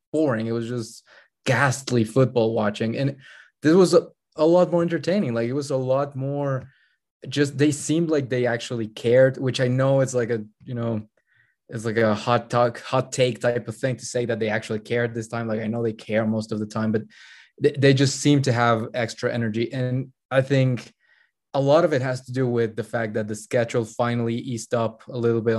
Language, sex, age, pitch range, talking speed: English, male, 20-39, 115-135 Hz, 220 wpm